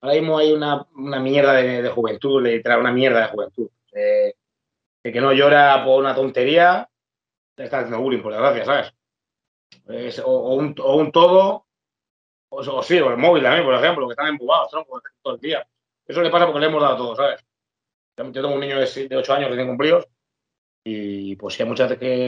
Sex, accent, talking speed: male, Spanish, 205 wpm